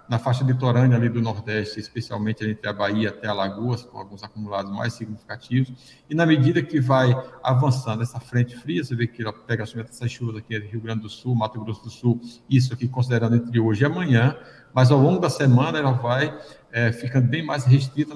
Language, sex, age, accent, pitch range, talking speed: Portuguese, male, 60-79, Brazilian, 115-135 Hz, 215 wpm